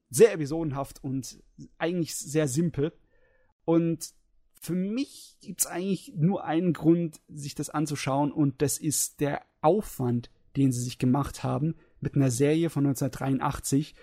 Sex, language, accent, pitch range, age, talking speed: male, German, German, 130-155 Hz, 30-49, 140 wpm